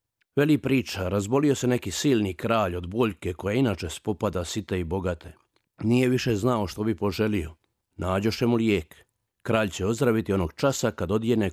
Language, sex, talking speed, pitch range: Croatian, male, 165 wpm, 95-120 Hz